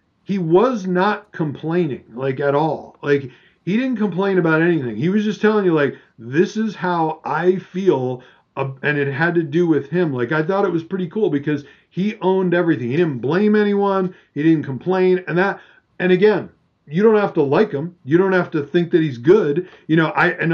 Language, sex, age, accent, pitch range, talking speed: English, male, 40-59, American, 140-180 Hz, 205 wpm